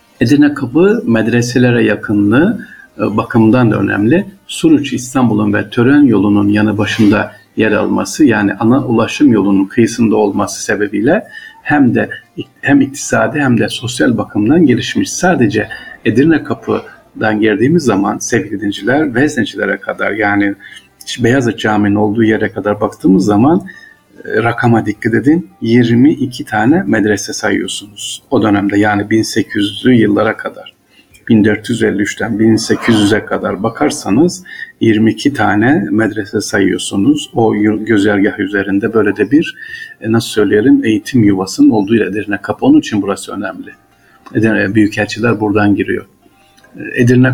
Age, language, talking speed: 50-69, Turkish, 115 wpm